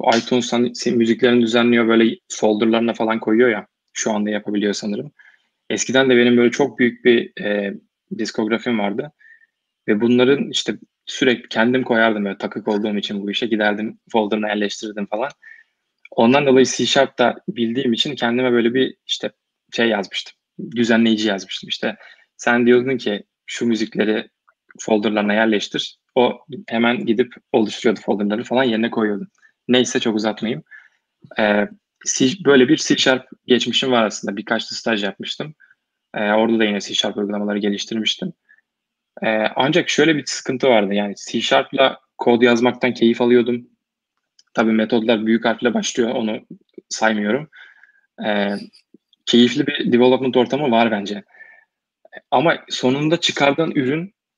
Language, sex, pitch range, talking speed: Turkish, male, 110-130 Hz, 125 wpm